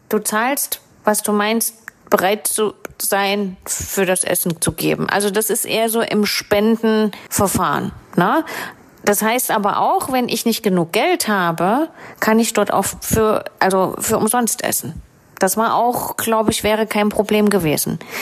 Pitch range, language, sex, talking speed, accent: 205-245 Hz, German, female, 160 wpm, German